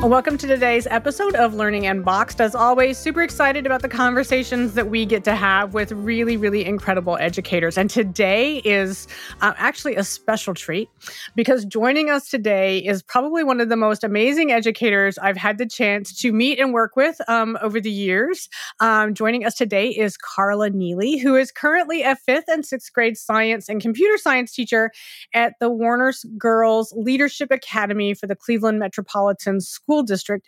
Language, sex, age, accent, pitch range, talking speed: English, female, 30-49, American, 200-260 Hz, 175 wpm